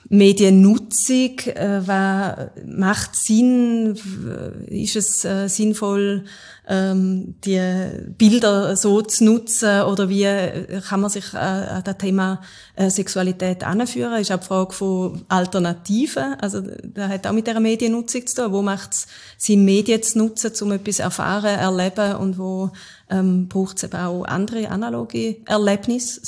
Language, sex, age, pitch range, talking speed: German, female, 30-49, 190-220 Hz, 130 wpm